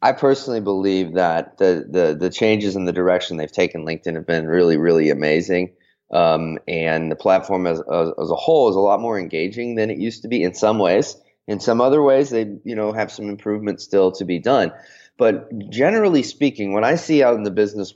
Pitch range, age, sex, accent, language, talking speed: 90-115 Hz, 30-49, male, American, English, 215 wpm